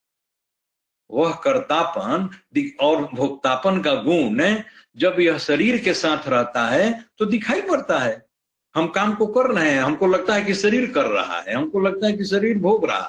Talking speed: 175 wpm